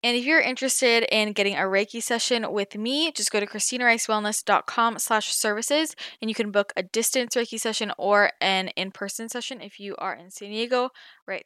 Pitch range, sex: 195-245 Hz, female